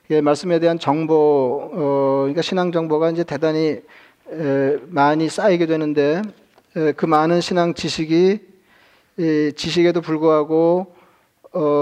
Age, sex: 40-59, male